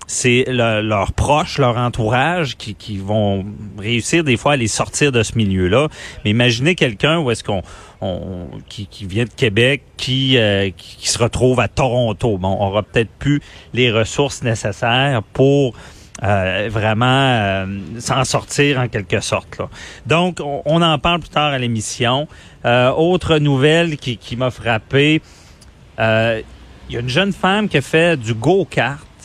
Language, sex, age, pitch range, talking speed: French, male, 40-59, 110-145 Hz, 170 wpm